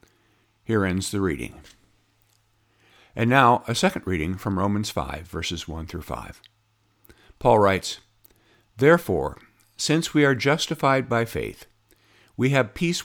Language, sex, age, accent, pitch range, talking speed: English, male, 50-69, American, 100-125 Hz, 125 wpm